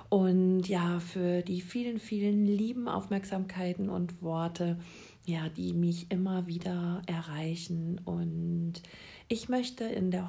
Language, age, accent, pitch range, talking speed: German, 50-69, German, 180-210 Hz, 115 wpm